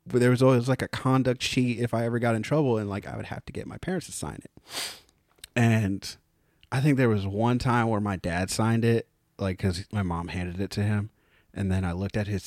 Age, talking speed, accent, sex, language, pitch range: 30-49, 250 wpm, American, male, English, 105-145 Hz